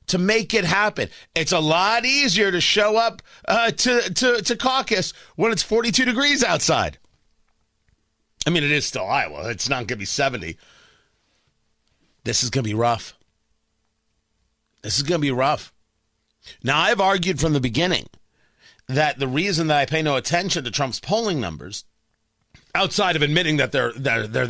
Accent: American